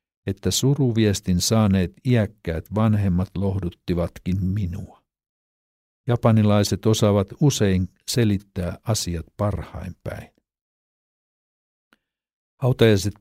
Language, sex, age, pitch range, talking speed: Finnish, male, 60-79, 90-110 Hz, 65 wpm